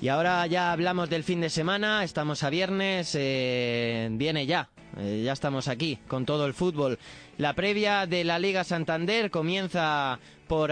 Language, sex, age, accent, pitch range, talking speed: Spanish, male, 20-39, Spanish, 135-165 Hz, 170 wpm